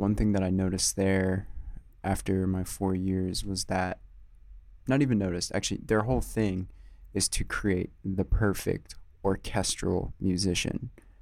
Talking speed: 140 wpm